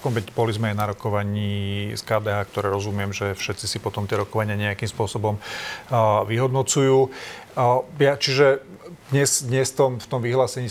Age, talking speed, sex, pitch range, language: 40-59, 165 wpm, male, 105-120 Hz, Slovak